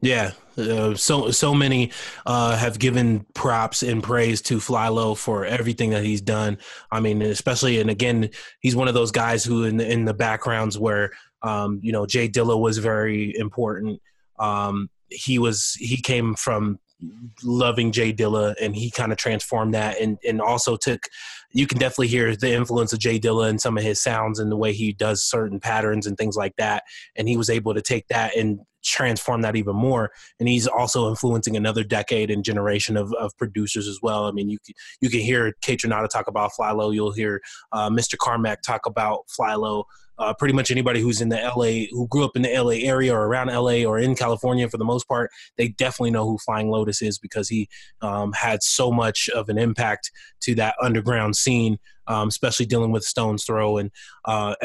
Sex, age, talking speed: male, 20-39, 205 wpm